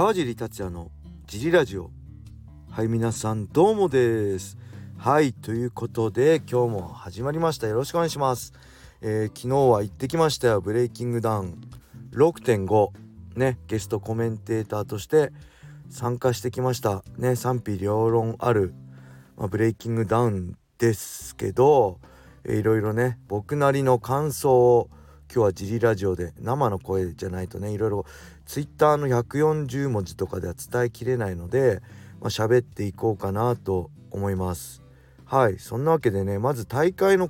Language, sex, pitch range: Japanese, male, 100-130 Hz